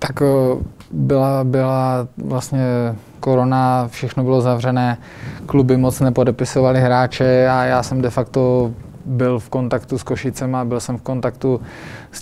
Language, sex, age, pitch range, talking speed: Slovak, male, 20-39, 120-130 Hz, 140 wpm